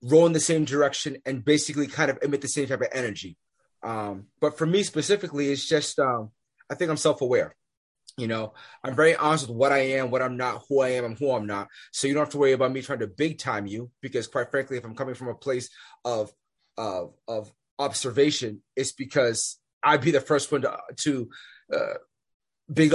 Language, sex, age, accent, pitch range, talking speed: English, male, 30-49, American, 125-150 Hz, 215 wpm